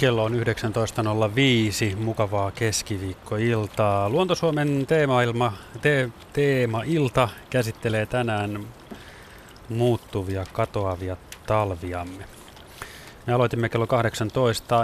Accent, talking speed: native, 75 wpm